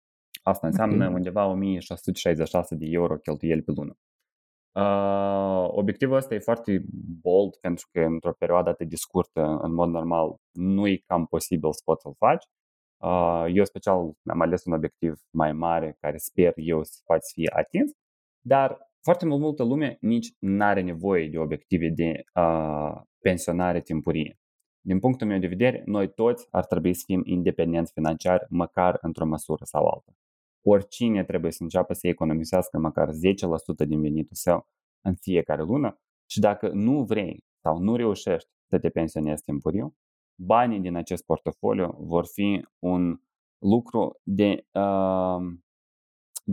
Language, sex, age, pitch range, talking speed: Romanian, male, 20-39, 80-95 Hz, 150 wpm